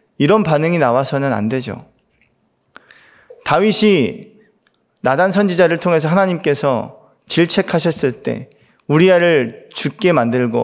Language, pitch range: Korean, 135-185 Hz